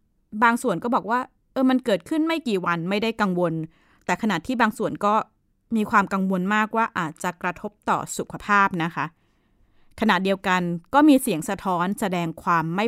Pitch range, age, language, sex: 170-215 Hz, 20-39, Thai, female